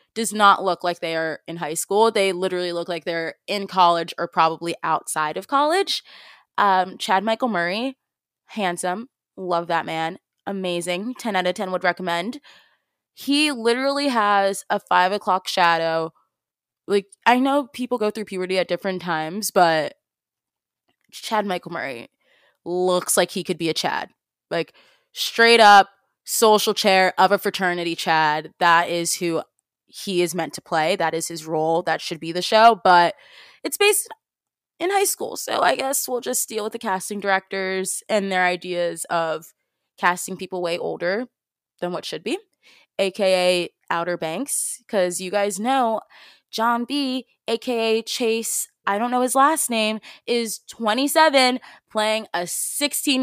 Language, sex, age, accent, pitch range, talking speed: English, female, 20-39, American, 175-230 Hz, 160 wpm